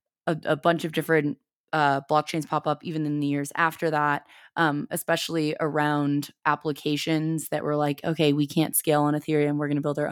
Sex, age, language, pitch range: female, 20-39, English, 145-170 Hz